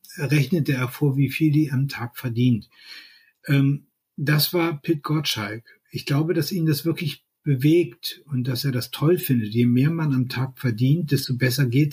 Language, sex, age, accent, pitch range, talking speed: German, male, 60-79, German, 125-150 Hz, 175 wpm